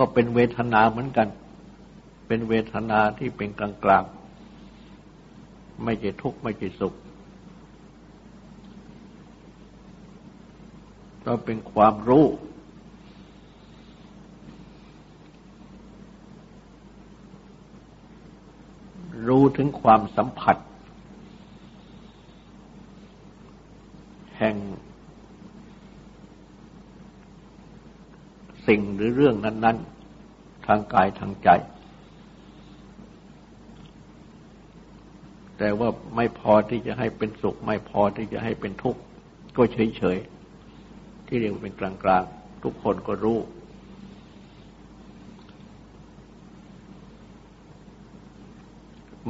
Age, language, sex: 60-79, Thai, male